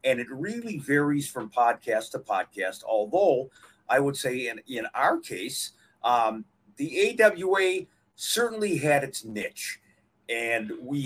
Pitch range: 110-170 Hz